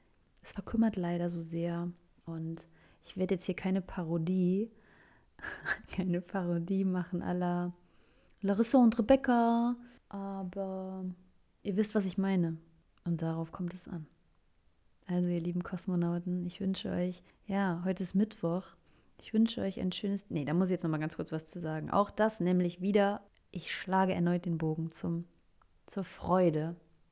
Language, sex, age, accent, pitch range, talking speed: German, female, 30-49, German, 175-200 Hz, 155 wpm